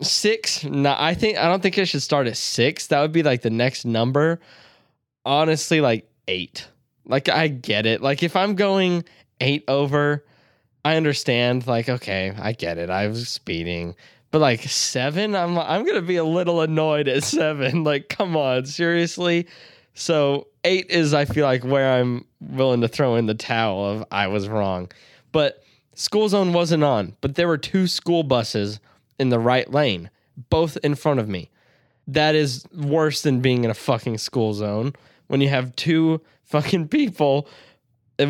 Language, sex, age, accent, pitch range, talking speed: English, male, 20-39, American, 125-165 Hz, 180 wpm